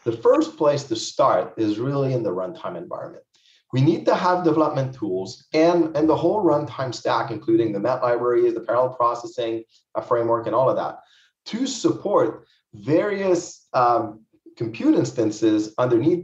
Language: English